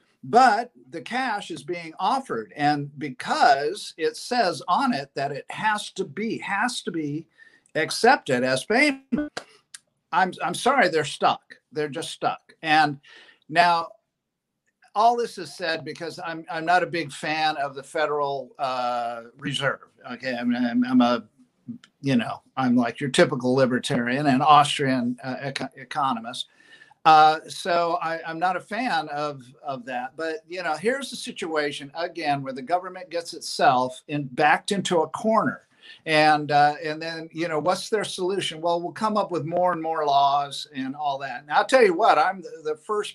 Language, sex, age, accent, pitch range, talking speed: English, male, 50-69, American, 140-205 Hz, 170 wpm